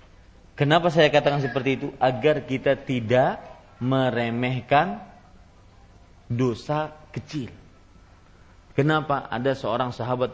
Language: Malay